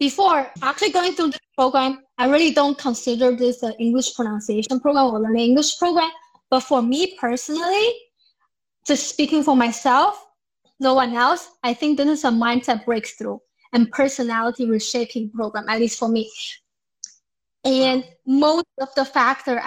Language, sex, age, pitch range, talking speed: English, female, 20-39, 235-275 Hz, 155 wpm